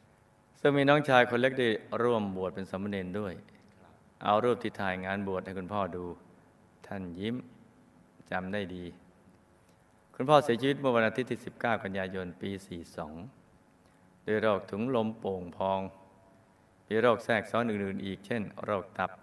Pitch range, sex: 95-115 Hz, male